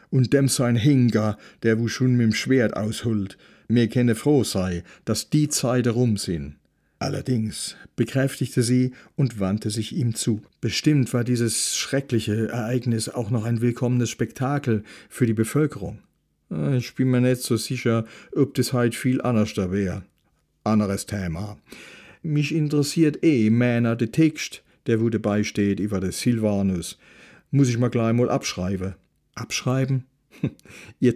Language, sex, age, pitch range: German, male, 50-69, 110-130 Hz